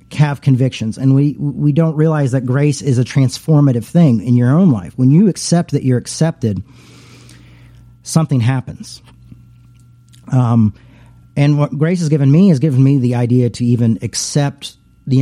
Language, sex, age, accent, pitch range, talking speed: English, male, 40-59, American, 120-145 Hz, 160 wpm